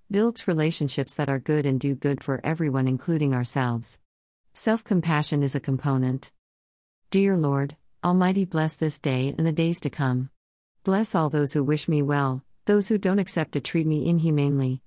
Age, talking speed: 50-69, 170 wpm